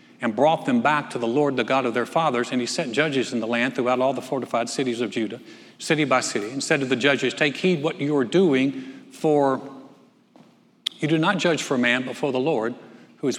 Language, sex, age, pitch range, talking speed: English, male, 60-79, 130-170 Hz, 240 wpm